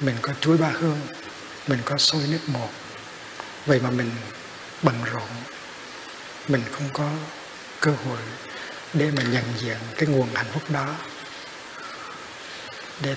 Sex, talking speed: male, 135 wpm